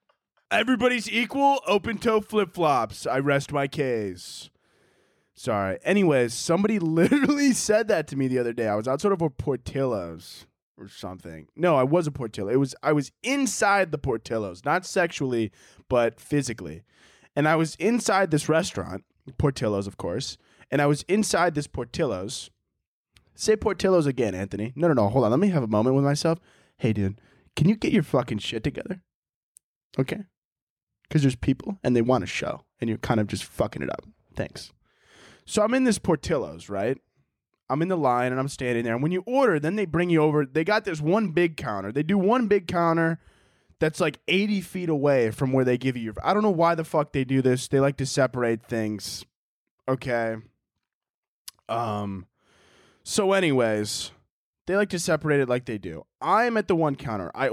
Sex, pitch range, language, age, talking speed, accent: male, 120-180 Hz, English, 20-39, 190 wpm, American